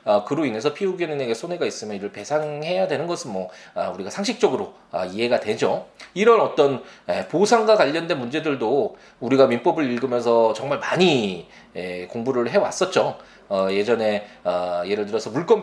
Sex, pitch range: male, 125-215 Hz